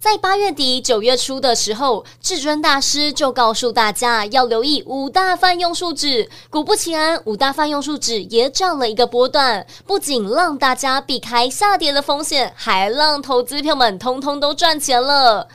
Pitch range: 245-340 Hz